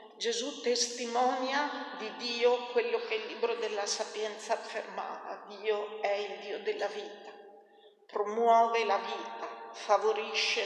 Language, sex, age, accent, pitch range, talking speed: Italian, female, 50-69, native, 200-250 Hz, 120 wpm